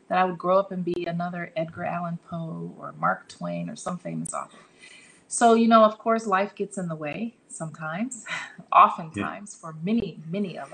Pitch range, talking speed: 170-210 Hz, 190 wpm